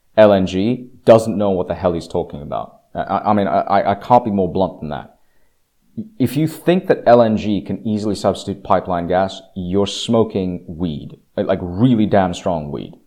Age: 30-49